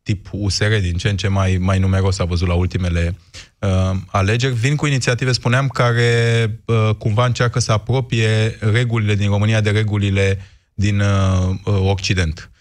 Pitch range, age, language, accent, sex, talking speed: 95-115 Hz, 20-39, Romanian, native, male, 145 wpm